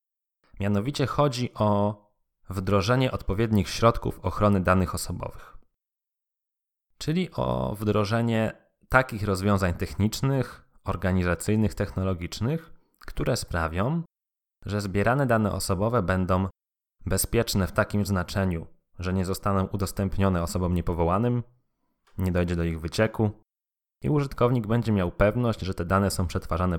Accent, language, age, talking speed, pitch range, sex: native, Polish, 20-39, 110 wpm, 95-115 Hz, male